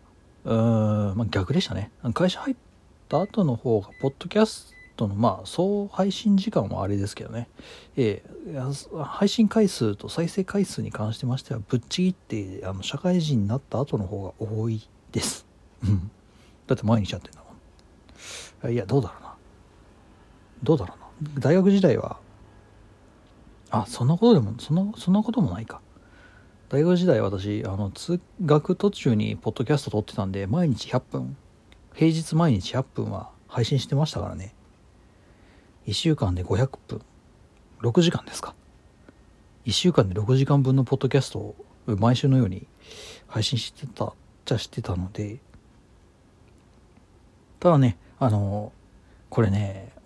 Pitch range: 100-145 Hz